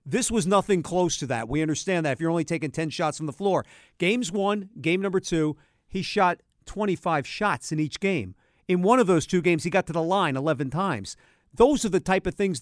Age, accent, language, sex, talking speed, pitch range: 50-69, American, English, male, 235 wpm, 160-215 Hz